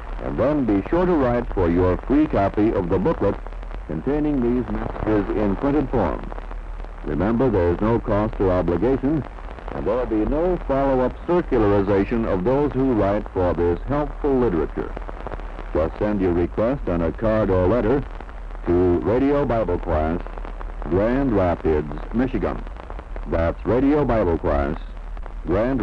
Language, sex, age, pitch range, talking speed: Italian, male, 60-79, 85-125 Hz, 145 wpm